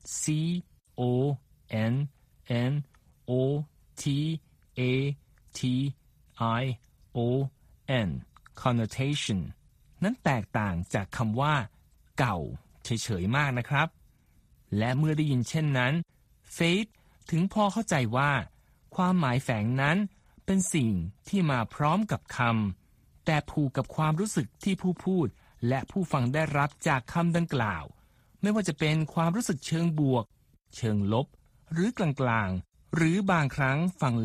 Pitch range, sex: 120-165 Hz, male